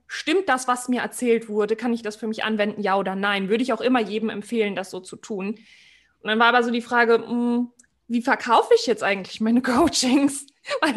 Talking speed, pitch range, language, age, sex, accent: 220 wpm, 225-275 Hz, English, 20-39, female, German